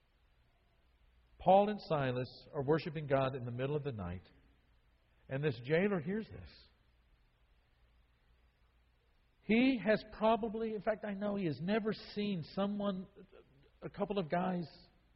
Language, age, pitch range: English, 50-69, 105-170 Hz